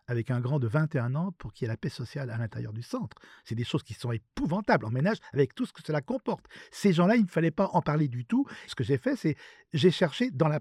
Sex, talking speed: male, 285 wpm